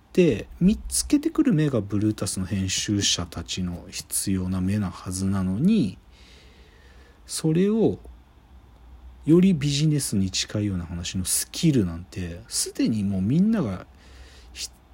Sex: male